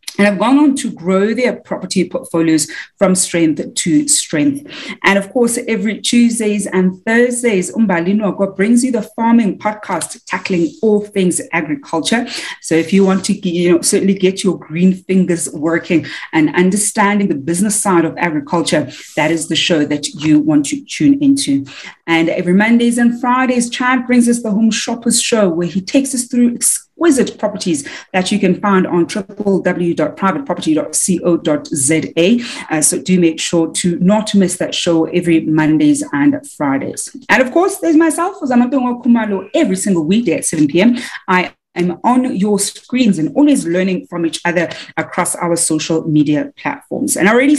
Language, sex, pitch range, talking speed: English, female, 175-245 Hz, 165 wpm